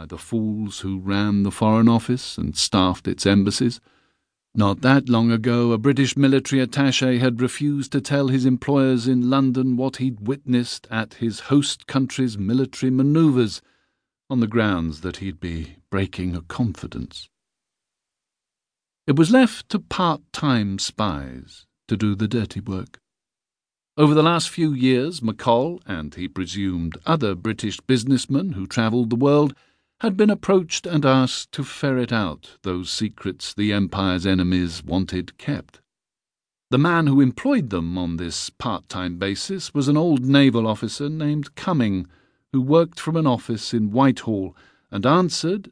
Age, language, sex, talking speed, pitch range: 50-69, English, male, 145 wpm, 95-140 Hz